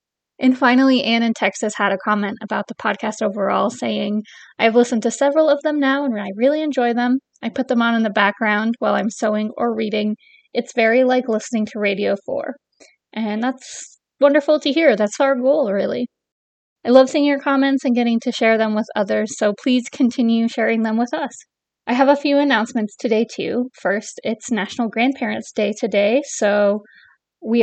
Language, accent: English, American